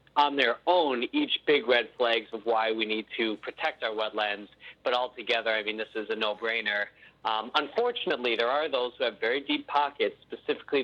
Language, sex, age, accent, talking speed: English, male, 40-59, American, 185 wpm